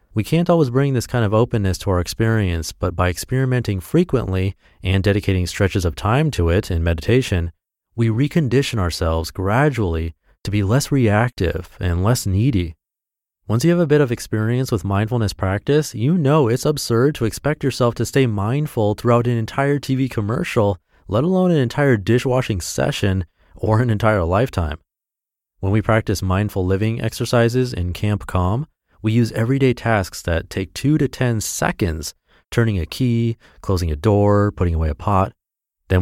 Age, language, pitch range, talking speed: 30-49, English, 90-120 Hz, 165 wpm